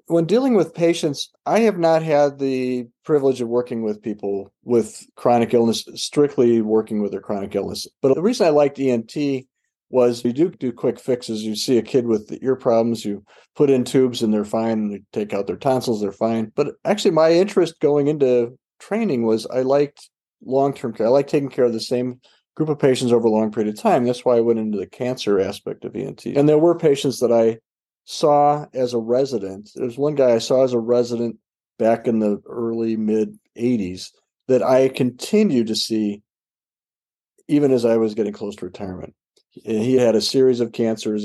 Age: 40-59